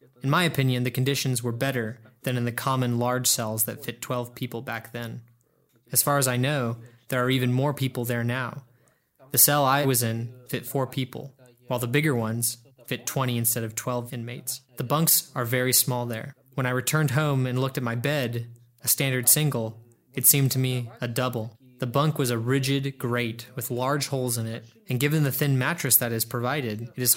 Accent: American